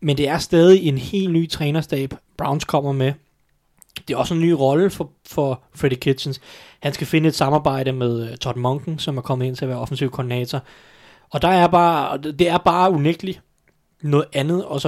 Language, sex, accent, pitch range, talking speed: Danish, male, native, 130-155 Hz, 200 wpm